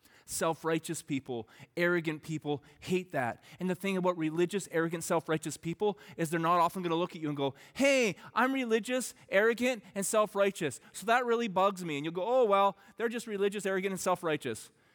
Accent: American